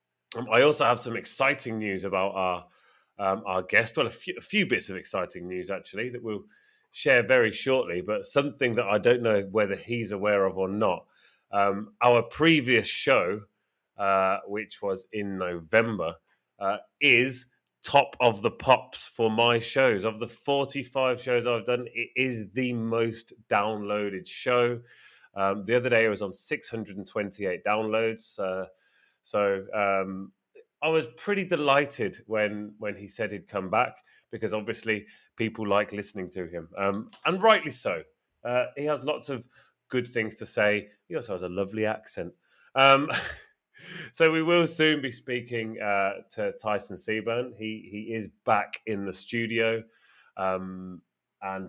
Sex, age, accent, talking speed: male, 30-49, British, 160 wpm